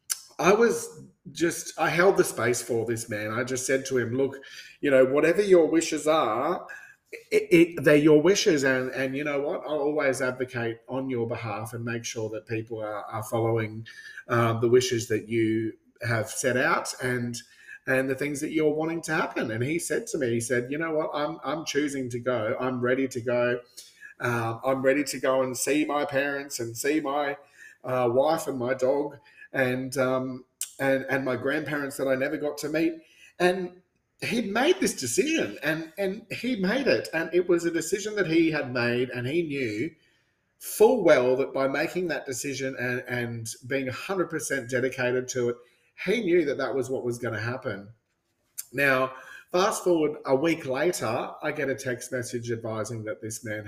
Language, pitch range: English, 120-155 Hz